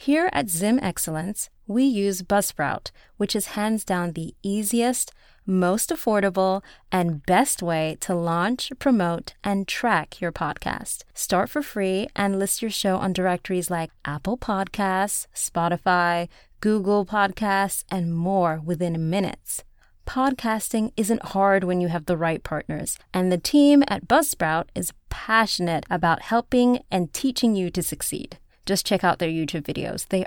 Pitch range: 175-220 Hz